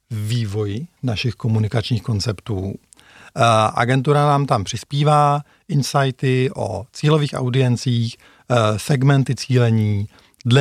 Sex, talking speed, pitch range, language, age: male, 85 wpm, 110-145 Hz, Czech, 50-69